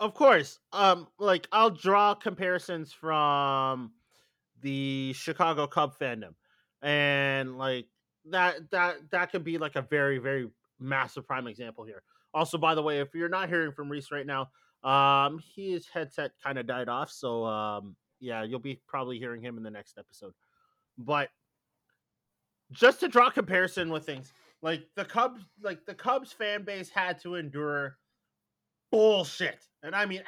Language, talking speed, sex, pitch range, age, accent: English, 160 wpm, male, 140-190 Hz, 30-49, American